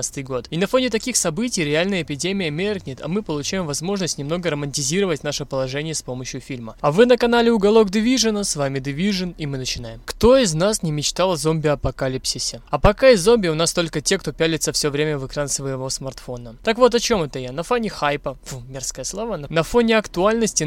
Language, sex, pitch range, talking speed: Russian, male, 140-195 Hz, 205 wpm